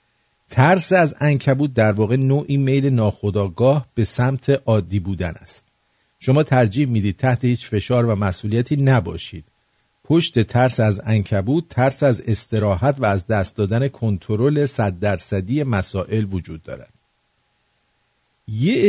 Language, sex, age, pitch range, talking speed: English, male, 50-69, 100-140 Hz, 135 wpm